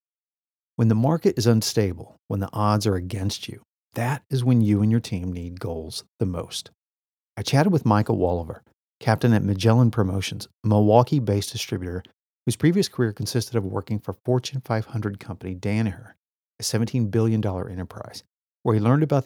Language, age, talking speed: English, 40-59, 165 wpm